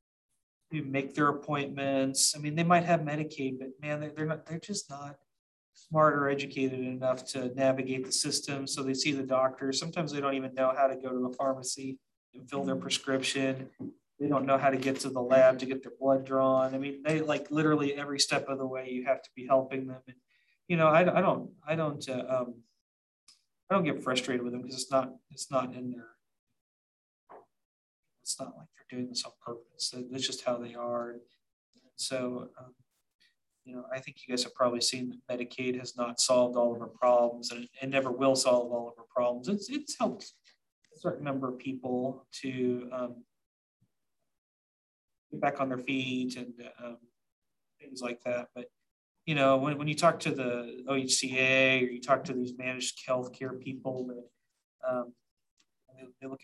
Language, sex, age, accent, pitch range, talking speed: English, male, 30-49, American, 125-140 Hz, 195 wpm